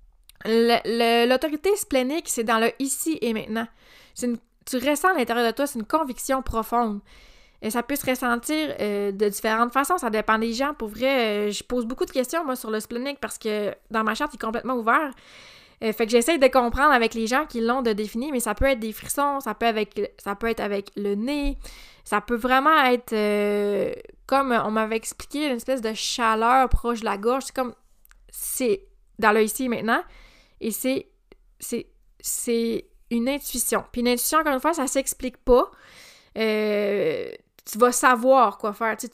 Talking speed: 205 wpm